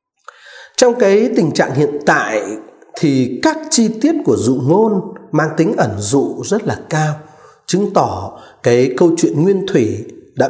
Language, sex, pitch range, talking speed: Vietnamese, male, 155-250 Hz, 160 wpm